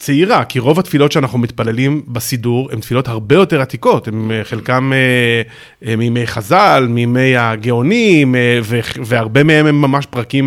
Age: 30-49